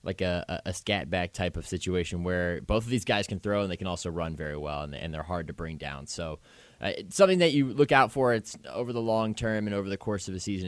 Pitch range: 85-105 Hz